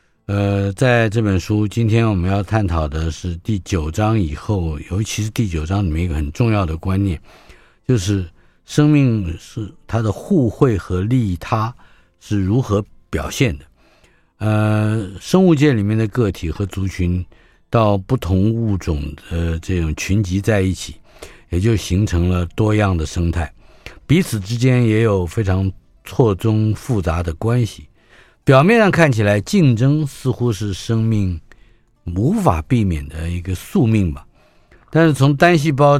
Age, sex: 50-69, male